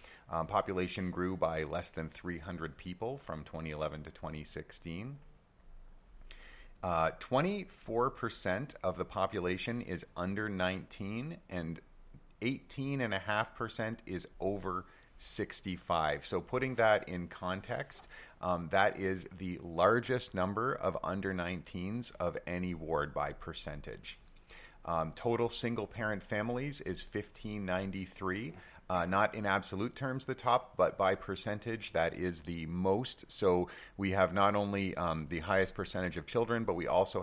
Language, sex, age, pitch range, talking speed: English, male, 40-59, 85-110 Hz, 125 wpm